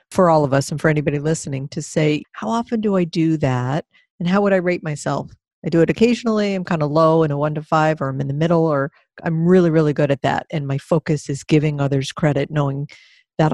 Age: 50-69